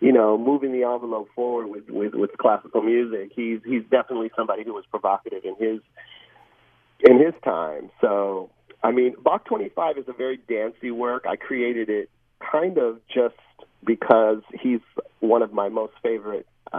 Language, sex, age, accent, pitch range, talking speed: English, male, 40-59, American, 110-140 Hz, 170 wpm